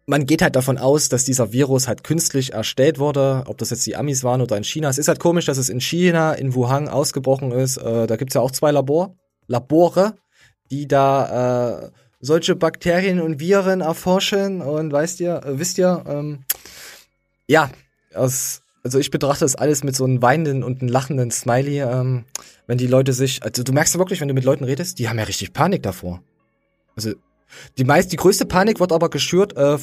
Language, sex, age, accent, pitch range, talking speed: German, male, 20-39, German, 125-165 Hz, 205 wpm